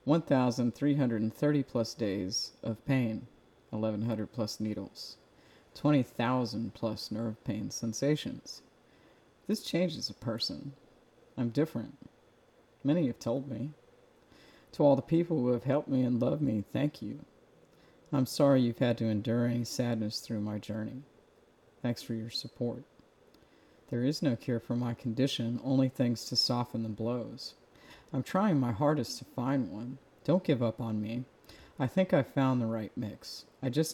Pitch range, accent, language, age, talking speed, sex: 115-135 Hz, American, English, 40-59, 150 wpm, male